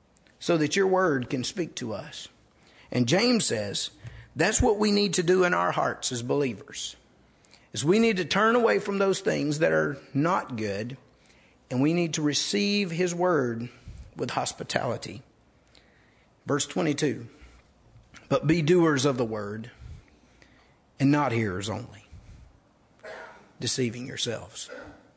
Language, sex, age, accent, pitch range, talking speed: English, male, 50-69, American, 115-195 Hz, 140 wpm